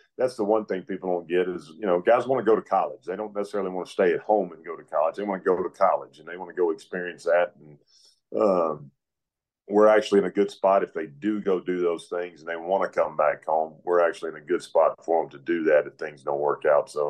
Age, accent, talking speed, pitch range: 40-59, American, 280 wpm, 85-110 Hz